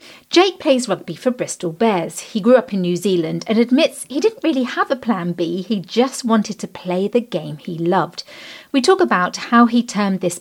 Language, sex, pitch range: English, female, 175-245 Hz